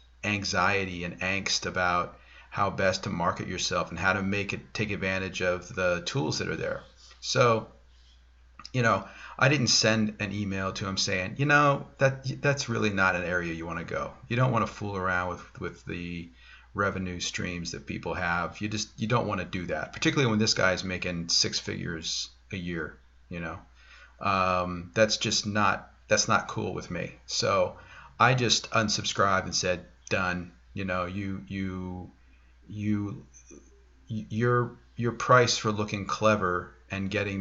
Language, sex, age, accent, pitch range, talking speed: English, male, 40-59, American, 85-110 Hz, 175 wpm